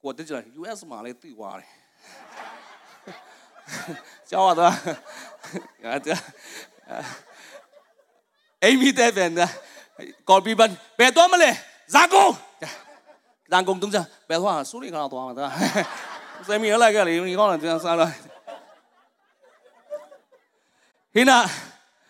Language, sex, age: English, male, 30-49